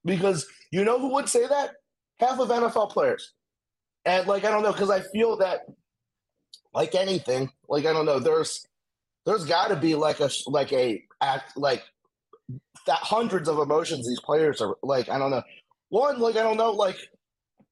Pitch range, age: 160-230 Hz, 30-49